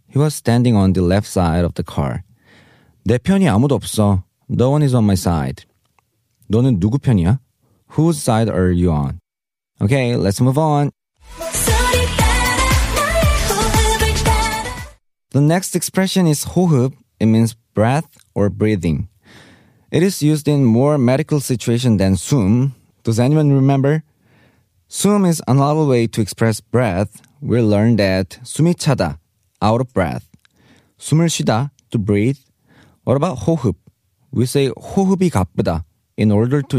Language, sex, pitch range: Korean, male, 100-140 Hz